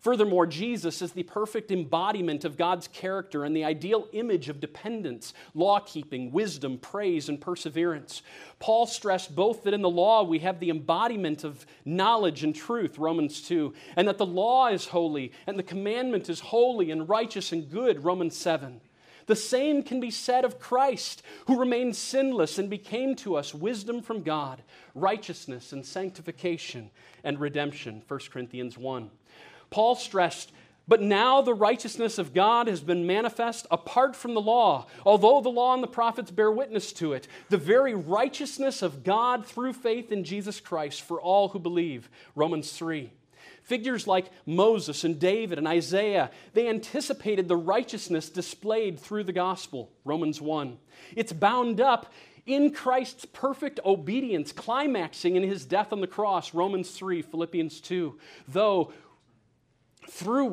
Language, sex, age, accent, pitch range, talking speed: English, male, 40-59, American, 160-225 Hz, 155 wpm